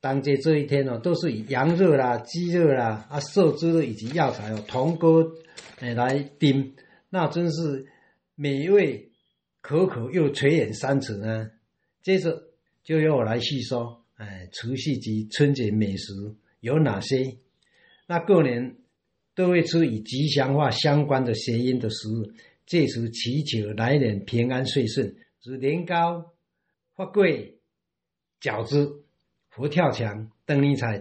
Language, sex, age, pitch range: Chinese, male, 60-79, 115-155 Hz